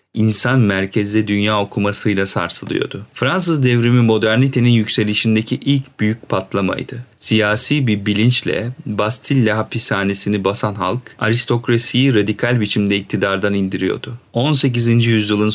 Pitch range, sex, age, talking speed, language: 105-125 Hz, male, 40-59, 100 wpm, Turkish